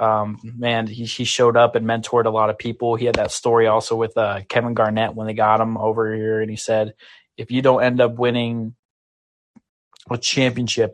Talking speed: 210 wpm